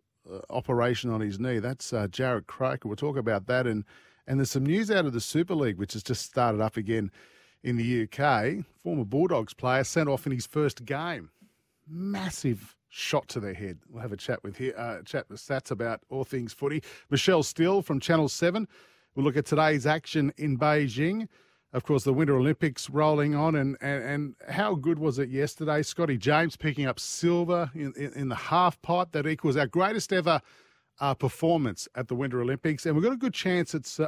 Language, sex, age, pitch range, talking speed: English, male, 40-59, 130-165 Hz, 205 wpm